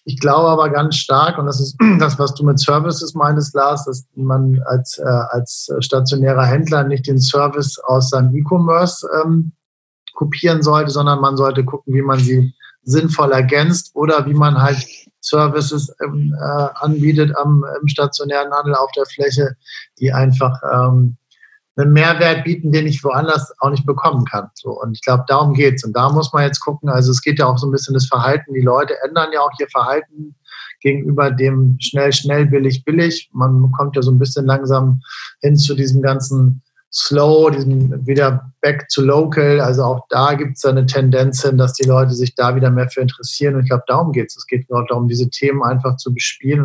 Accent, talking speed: German, 195 wpm